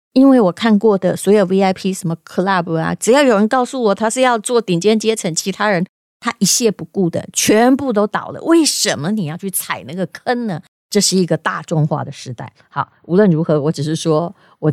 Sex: female